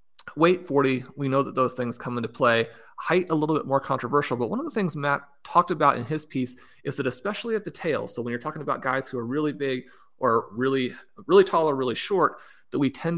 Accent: American